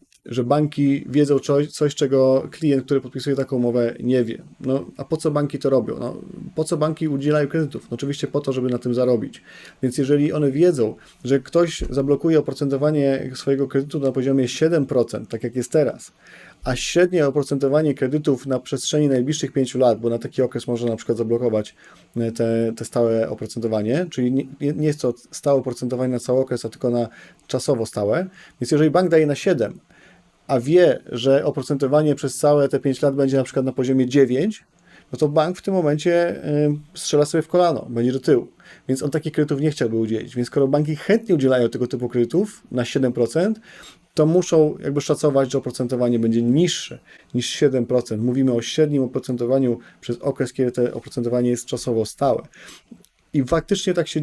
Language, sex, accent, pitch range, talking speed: Polish, male, native, 125-150 Hz, 175 wpm